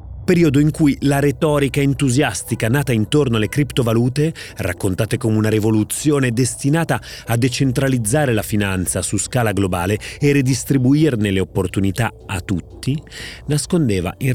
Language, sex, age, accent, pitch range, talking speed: Italian, male, 30-49, native, 110-145 Hz, 125 wpm